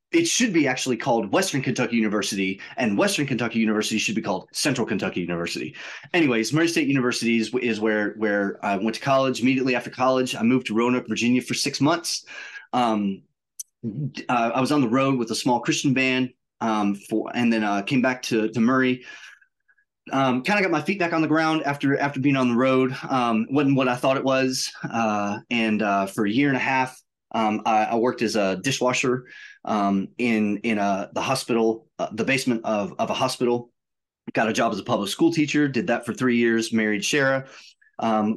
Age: 30-49